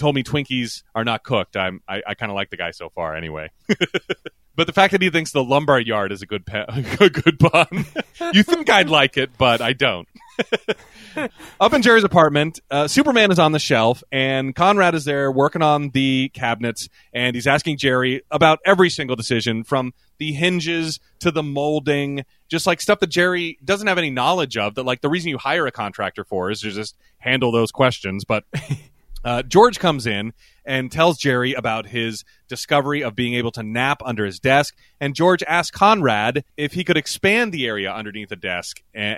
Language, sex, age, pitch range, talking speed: English, male, 30-49, 110-160 Hz, 200 wpm